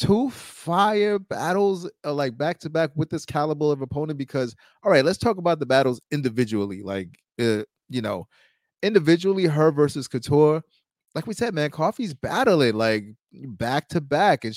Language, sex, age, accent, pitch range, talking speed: English, male, 30-49, American, 125-180 Hz, 165 wpm